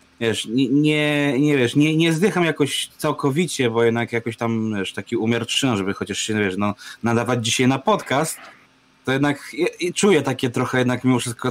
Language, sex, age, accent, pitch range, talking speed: Polish, male, 20-39, native, 105-125 Hz, 180 wpm